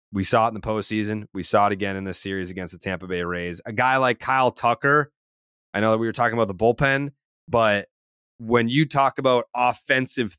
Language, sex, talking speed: English, male, 220 wpm